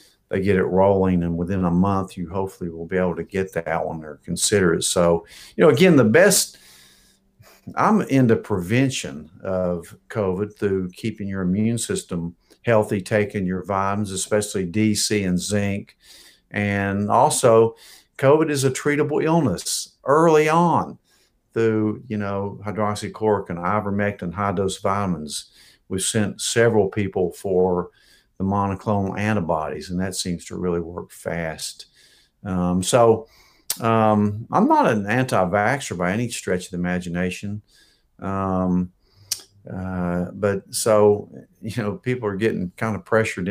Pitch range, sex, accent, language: 90-110 Hz, male, American, English